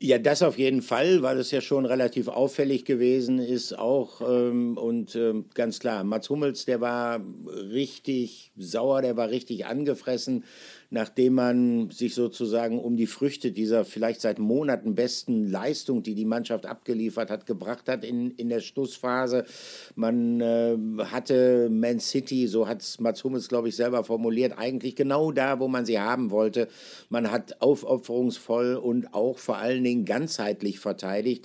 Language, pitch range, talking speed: German, 115-130 Hz, 160 wpm